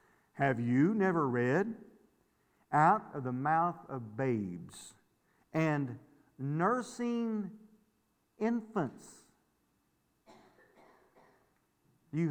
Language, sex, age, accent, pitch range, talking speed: English, male, 50-69, American, 140-195 Hz, 70 wpm